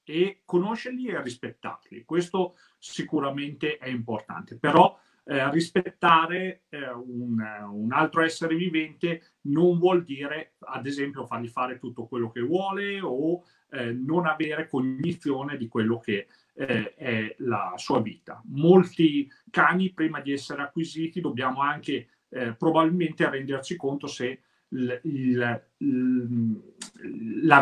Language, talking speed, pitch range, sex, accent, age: Italian, 120 wpm, 125-165 Hz, male, native, 40-59